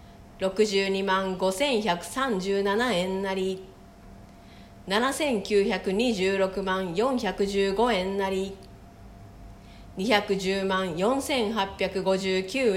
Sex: female